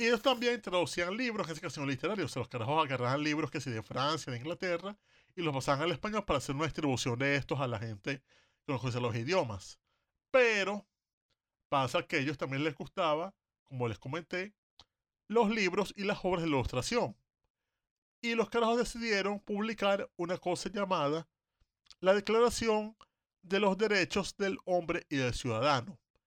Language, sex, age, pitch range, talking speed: Spanish, male, 30-49, 125-180 Hz, 175 wpm